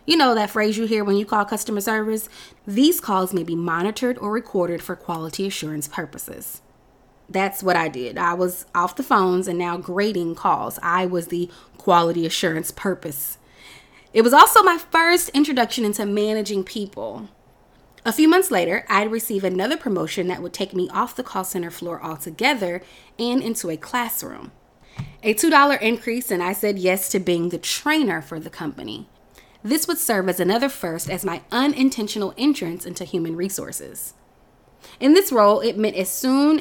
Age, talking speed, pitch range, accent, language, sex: 20-39, 175 wpm, 180-240 Hz, American, English, female